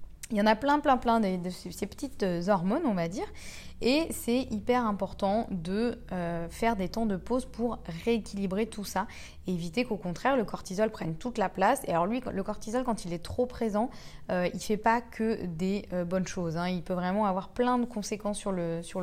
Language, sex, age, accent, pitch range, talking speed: French, female, 20-39, French, 185-230 Hz, 225 wpm